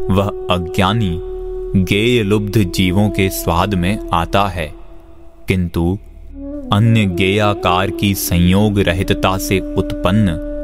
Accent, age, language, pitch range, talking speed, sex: native, 30-49, Hindi, 95-115 Hz, 100 wpm, male